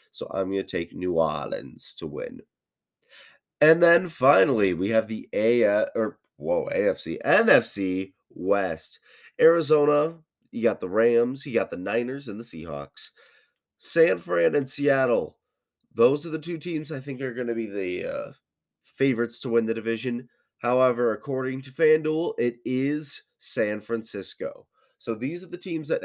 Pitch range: 110-155 Hz